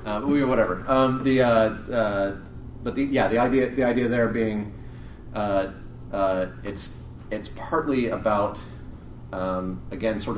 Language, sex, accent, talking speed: English, male, American, 140 wpm